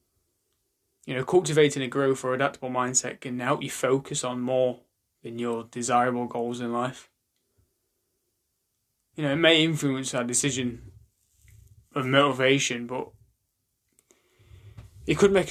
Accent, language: British, English